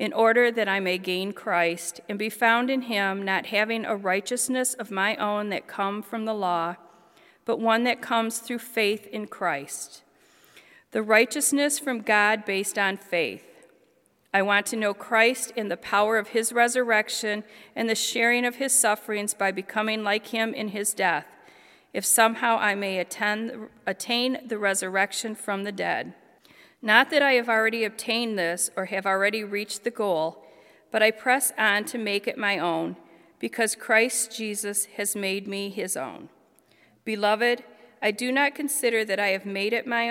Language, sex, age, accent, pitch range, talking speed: English, female, 40-59, American, 200-235 Hz, 170 wpm